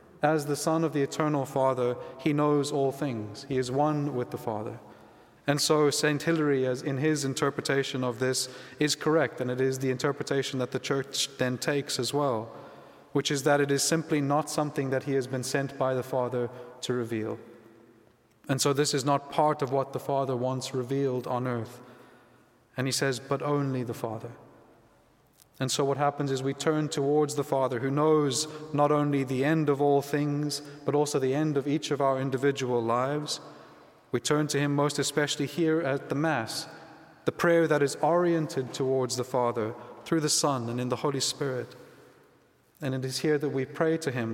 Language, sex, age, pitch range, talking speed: English, male, 30-49, 125-145 Hz, 195 wpm